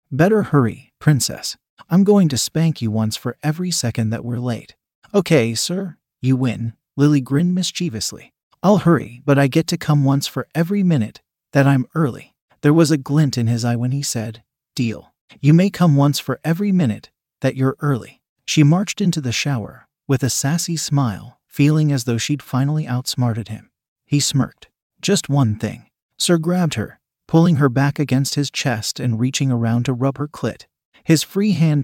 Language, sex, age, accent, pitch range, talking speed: English, male, 40-59, American, 125-165 Hz, 185 wpm